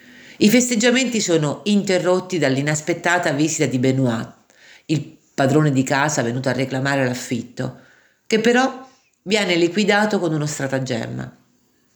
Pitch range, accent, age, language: 140-185 Hz, native, 50-69, Italian